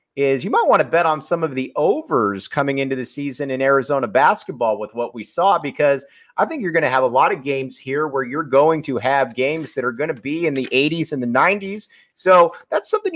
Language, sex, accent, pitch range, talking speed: English, male, American, 135-170 Hz, 245 wpm